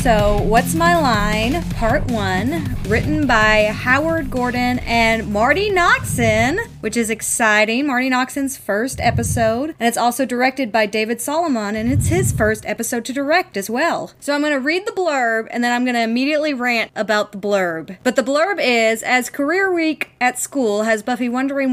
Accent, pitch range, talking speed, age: American, 220-295 Hz, 180 wpm, 30-49